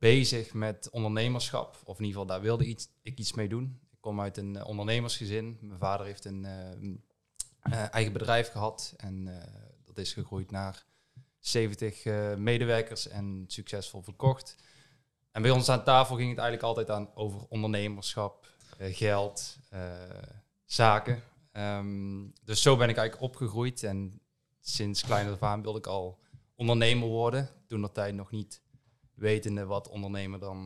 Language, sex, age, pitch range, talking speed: Dutch, male, 20-39, 105-125 Hz, 160 wpm